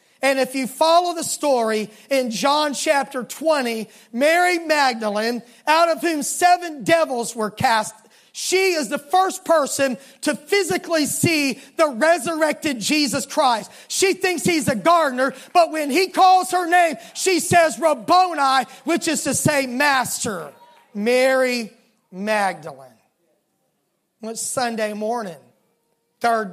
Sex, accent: male, American